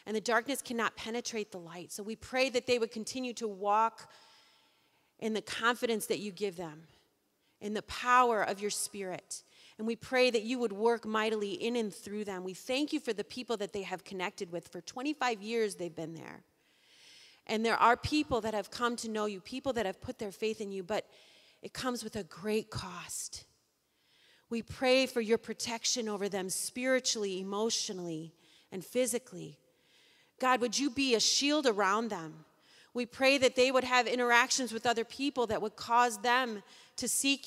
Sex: female